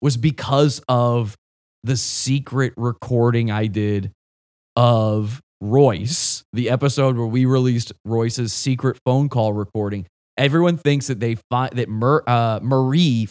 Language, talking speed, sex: English, 130 wpm, male